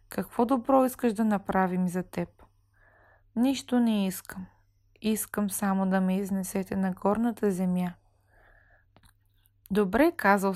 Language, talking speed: Bulgarian, 115 wpm